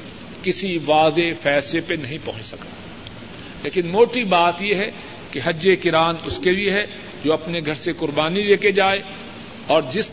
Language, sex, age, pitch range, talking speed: Urdu, male, 50-69, 150-180 Hz, 165 wpm